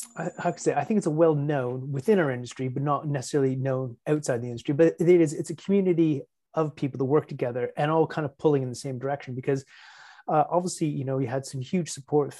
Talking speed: 235 wpm